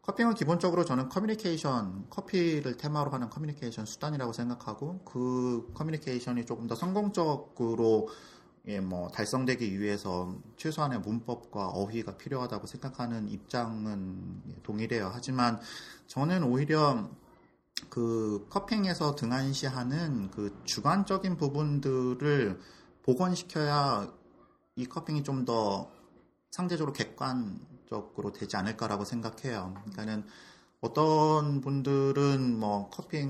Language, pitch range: Korean, 105-155 Hz